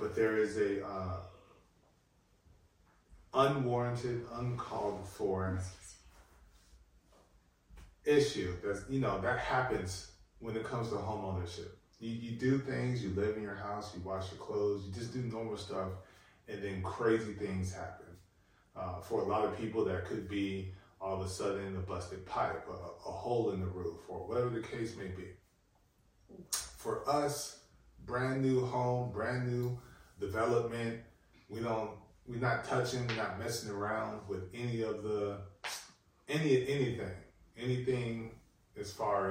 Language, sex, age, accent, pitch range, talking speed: English, male, 30-49, American, 95-120 Hz, 145 wpm